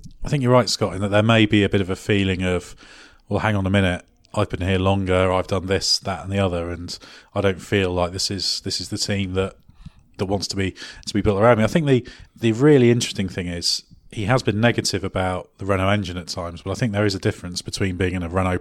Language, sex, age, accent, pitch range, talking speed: English, male, 30-49, British, 90-105 Hz, 270 wpm